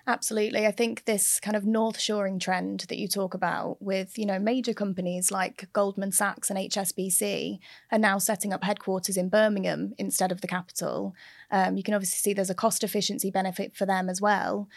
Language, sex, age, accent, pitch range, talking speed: English, female, 20-39, British, 190-210 Hz, 195 wpm